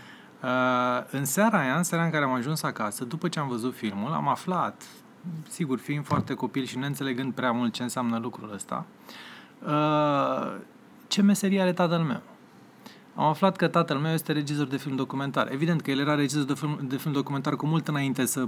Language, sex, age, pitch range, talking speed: Romanian, male, 20-39, 130-170 Hz, 190 wpm